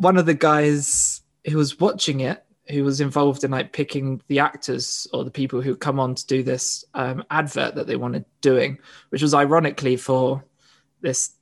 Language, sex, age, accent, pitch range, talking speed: English, male, 20-39, British, 135-150 Hz, 190 wpm